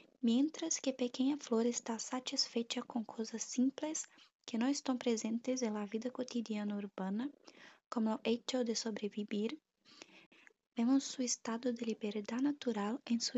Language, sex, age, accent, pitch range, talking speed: Portuguese, female, 10-29, Brazilian, 225-265 Hz, 140 wpm